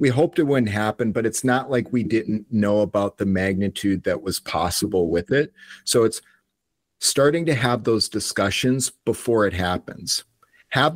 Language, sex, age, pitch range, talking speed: English, male, 40-59, 105-120 Hz, 170 wpm